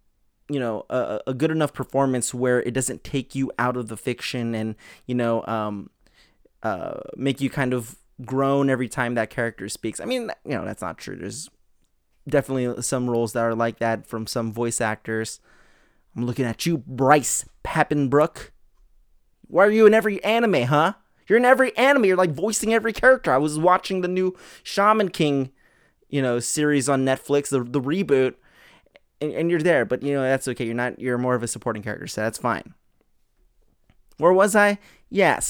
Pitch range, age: 120-175 Hz, 20-39